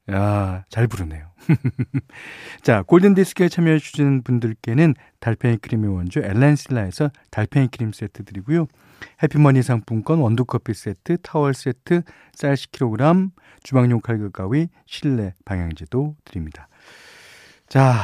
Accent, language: native, Korean